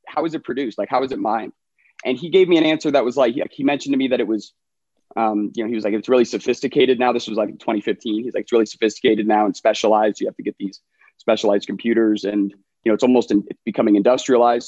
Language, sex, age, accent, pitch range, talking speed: English, male, 30-49, American, 105-130 Hz, 260 wpm